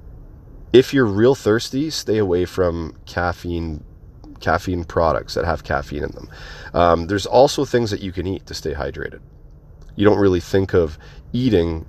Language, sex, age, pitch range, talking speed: English, male, 30-49, 80-100 Hz, 175 wpm